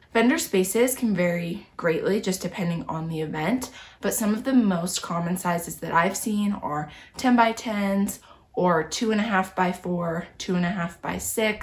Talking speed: 125 wpm